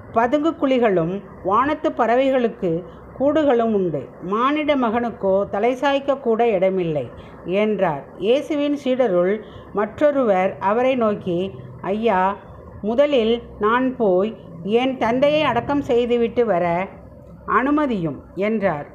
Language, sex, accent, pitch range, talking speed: Tamil, female, native, 190-265 Hz, 90 wpm